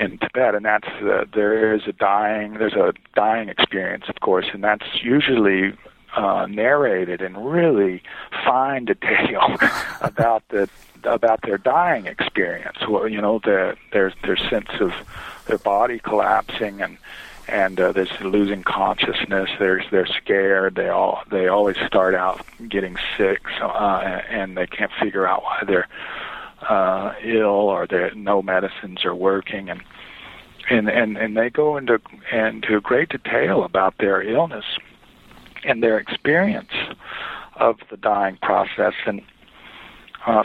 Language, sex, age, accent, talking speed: English, male, 40-59, American, 145 wpm